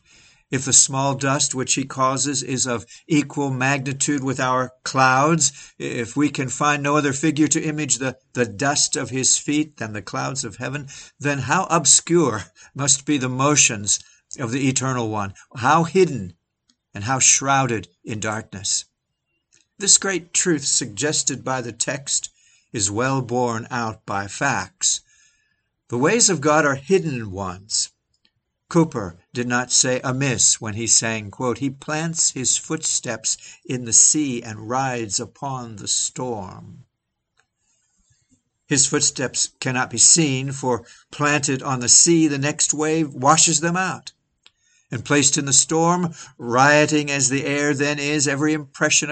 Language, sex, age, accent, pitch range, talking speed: English, male, 60-79, American, 120-150 Hz, 150 wpm